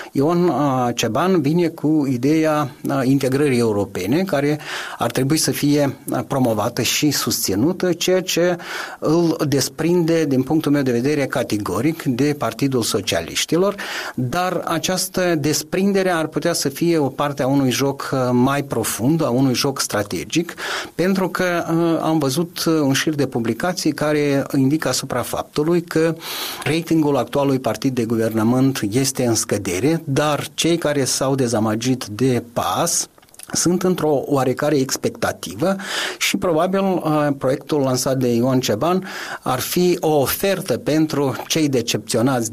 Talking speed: 130 wpm